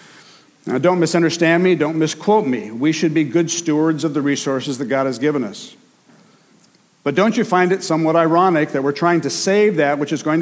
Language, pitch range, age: English, 145-180 Hz, 60-79